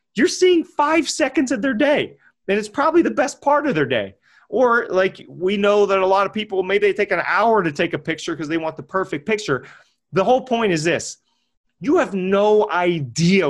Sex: male